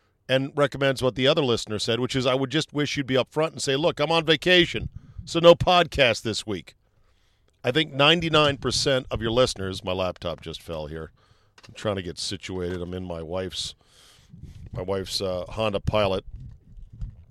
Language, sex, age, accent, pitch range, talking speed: English, male, 40-59, American, 100-130 Hz, 185 wpm